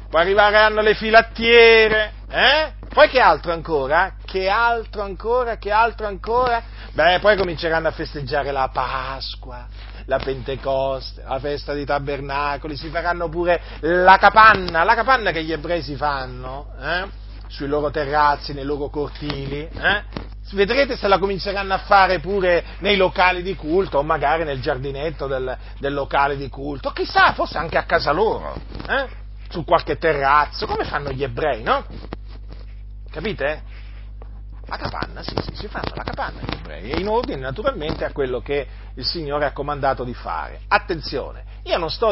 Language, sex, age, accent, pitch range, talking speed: Italian, male, 40-59, native, 125-190 Hz, 155 wpm